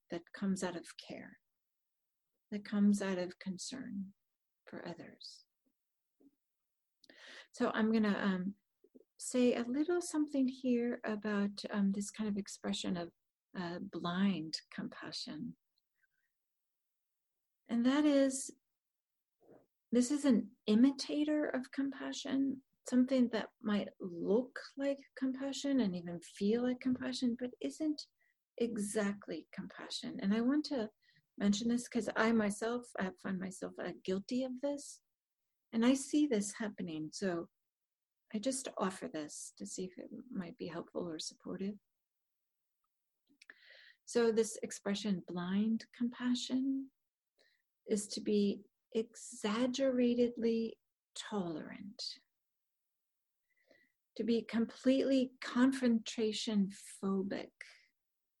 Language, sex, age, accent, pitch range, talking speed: English, female, 40-59, American, 200-265 Hz, 110 wpm